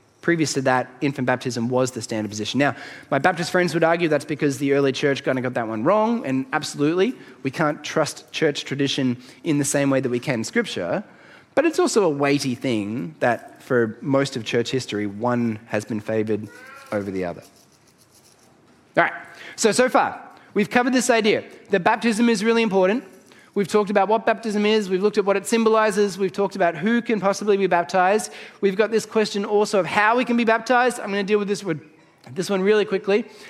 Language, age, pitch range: English, 20-39, 145-220 Hz